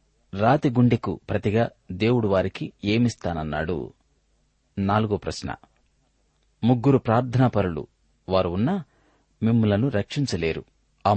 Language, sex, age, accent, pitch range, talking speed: Telugu, male, 30-49, native, 90-120 Hz, 70 wpm